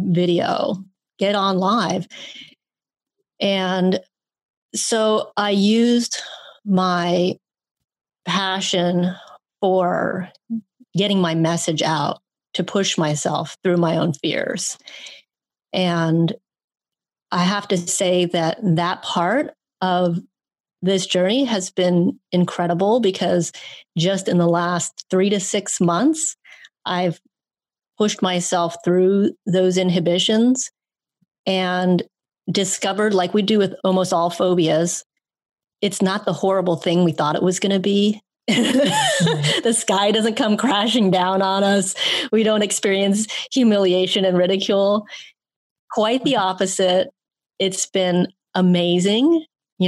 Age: 30-49